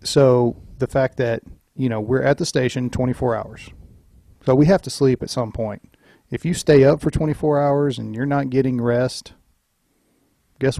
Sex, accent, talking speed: male, American, 185 wpm